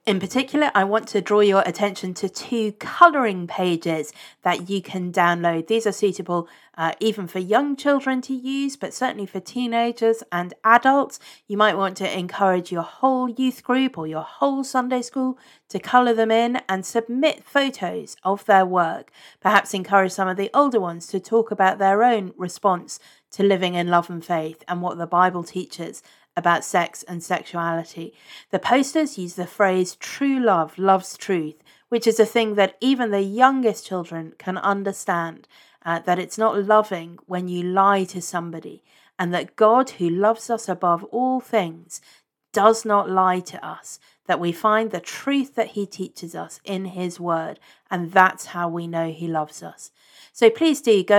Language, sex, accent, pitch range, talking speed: English, female, British, 175-225 Hz, 180 wpm